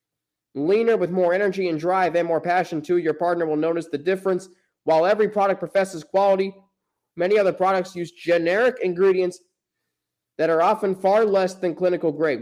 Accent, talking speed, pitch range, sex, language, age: American, 170 wpm, 170-195 Hz, male, English, 20-39